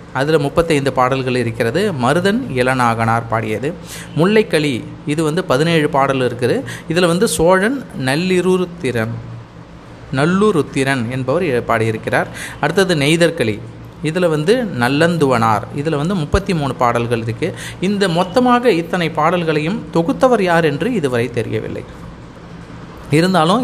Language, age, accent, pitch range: Tamil, 30-49, native, 130-180 Hz